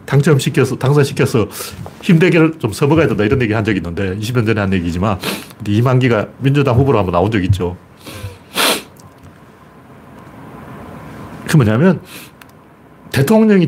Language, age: Korean, 40-59